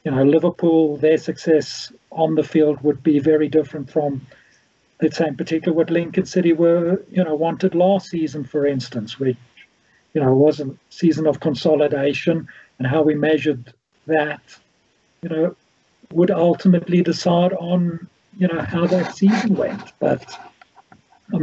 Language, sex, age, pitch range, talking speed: English, male, 50-69, 145-170 Hz, 155 wpm